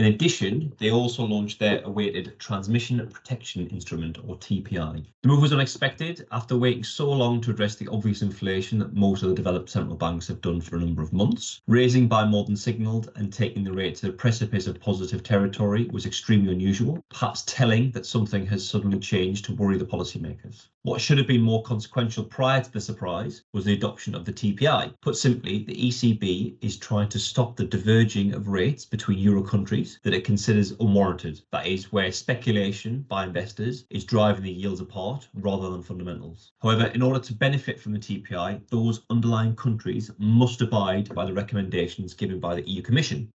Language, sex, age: English, male, 30-49